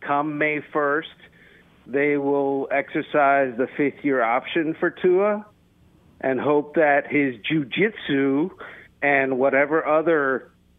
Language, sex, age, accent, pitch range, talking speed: English, male, 50-69, American, 130-175 Hz, 105 wpm